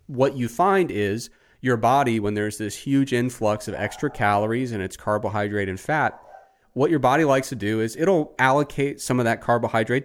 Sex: male